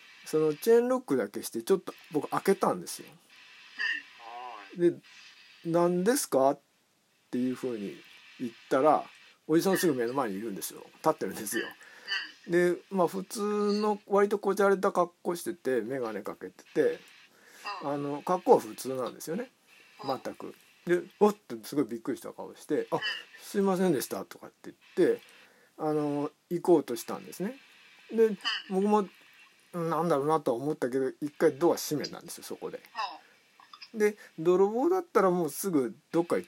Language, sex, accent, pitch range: Japanese, male, native, 155-235 Hz